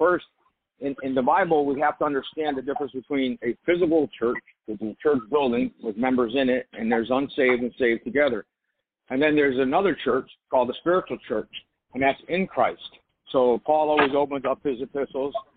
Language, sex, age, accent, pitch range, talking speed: English, male, 50-69, American, 125-170 Hz, 185 wpm